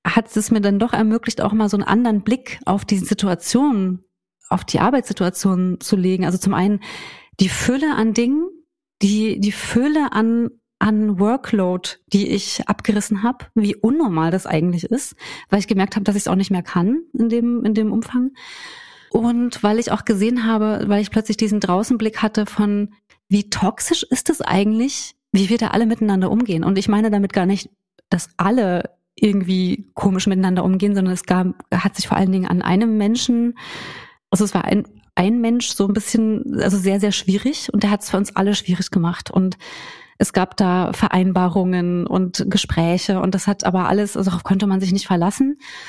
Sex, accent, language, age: female, German, German, 30-49